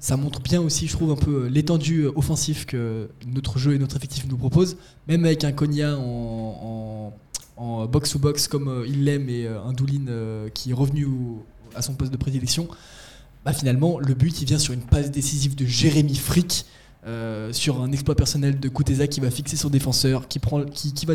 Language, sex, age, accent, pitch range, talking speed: French, male, 20-39, French, 125-150 Hz, 200 wpm